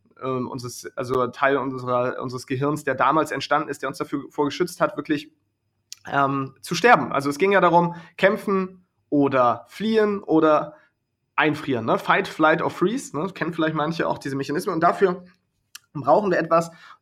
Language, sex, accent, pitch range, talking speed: German, male, German, 140-175 Hz, 170 wpm